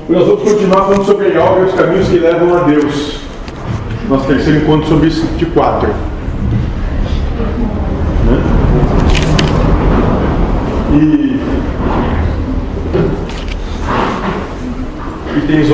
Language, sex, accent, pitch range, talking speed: Portuguese, male, Brazilian, 145-190 Hz, 90 wpm